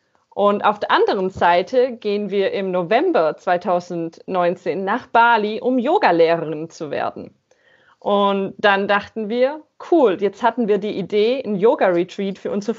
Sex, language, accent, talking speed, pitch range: female, German, German, 140 wpm, 200-255 Hz